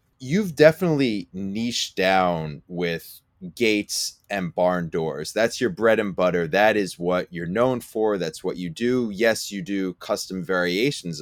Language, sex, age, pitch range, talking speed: English, male, 20-39, 90-120 Hz, 155 wpm